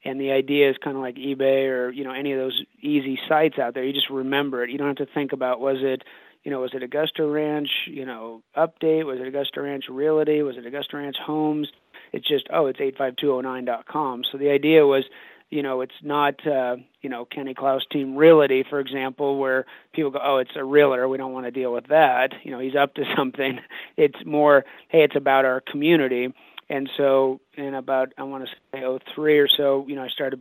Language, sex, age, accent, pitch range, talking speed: English, male, 30-49, American, 130-145 Hz, 225 wpm